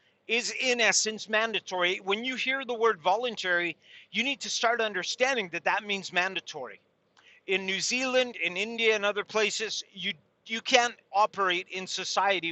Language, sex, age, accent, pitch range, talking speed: English, male, 40-59, American, 180-225 Hz, 160 wpm